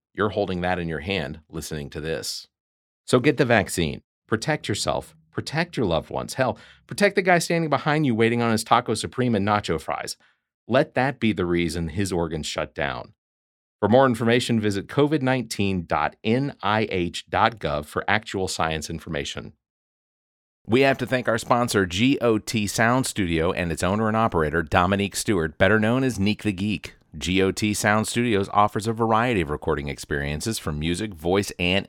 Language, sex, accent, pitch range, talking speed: English, male, American, 85-115 Hz, 165 wpm